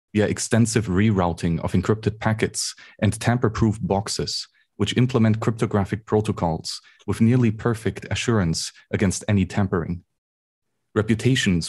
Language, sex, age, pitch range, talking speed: English, male, 30-49, 90-110 Hz, 110 wpm